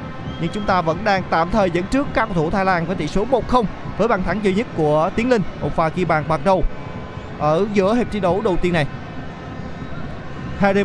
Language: Vietnamese